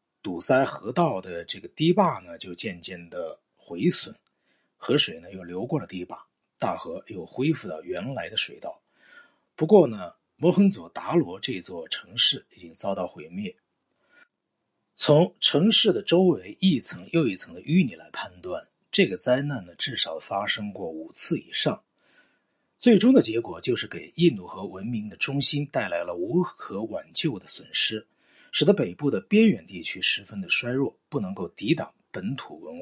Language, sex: Chinese, male